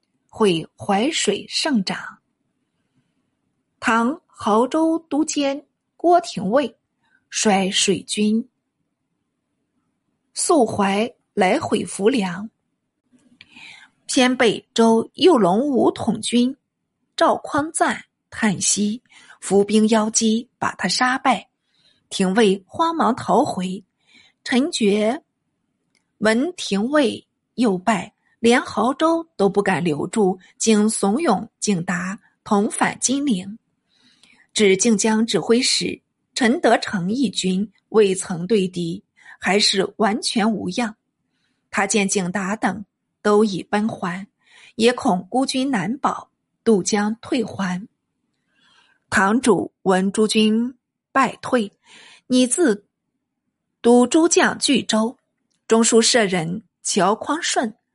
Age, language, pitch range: 50-69, Chinese, 200-255 Hz